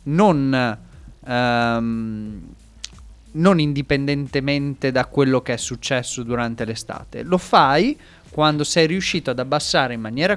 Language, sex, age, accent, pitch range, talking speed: Italian, male, 30-49, native, 115-150 Hz, 115 wpm